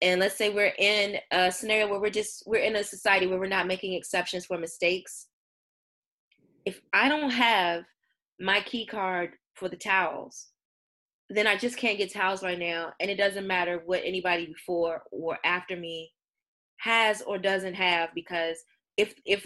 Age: 20-39